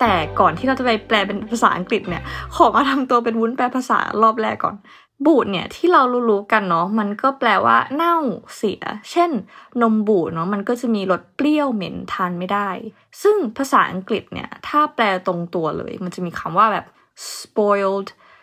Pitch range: 185-245 Hz